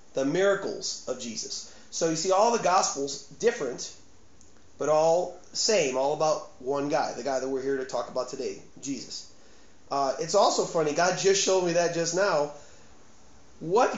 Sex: male